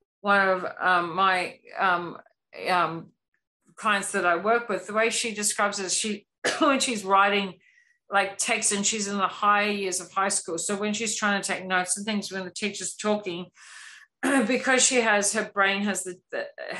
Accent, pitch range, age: Australian, 175-200 Hz, 50-69